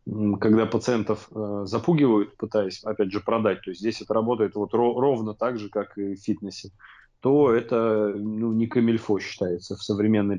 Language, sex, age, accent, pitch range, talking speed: Russian, male, 30-49, native, 105-120 Hz, 160 wpm